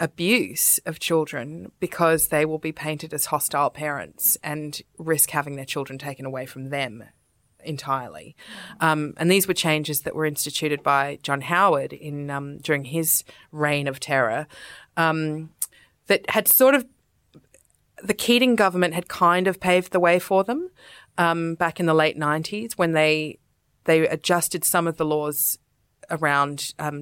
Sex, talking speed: female, 160 wpm